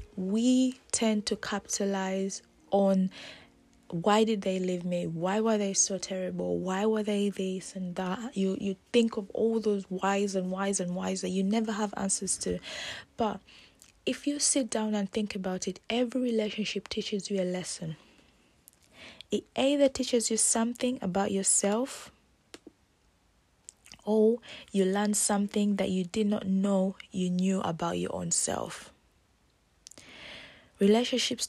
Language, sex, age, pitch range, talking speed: English, female, 20-39, 180-215 Hz, 145 wpm